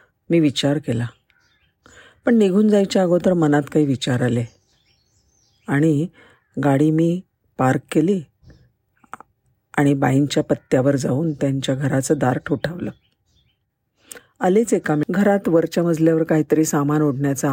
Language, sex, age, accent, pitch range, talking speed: Marathi, female, 50-69, native, 135-175 Hz, 110 wpm